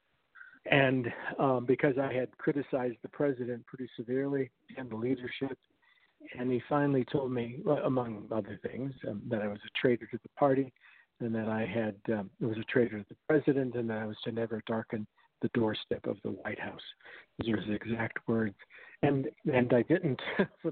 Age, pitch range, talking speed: 50-69, 120-160 Hz, 185 wpm